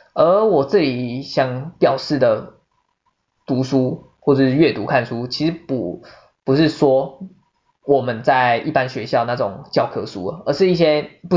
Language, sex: Chinese, male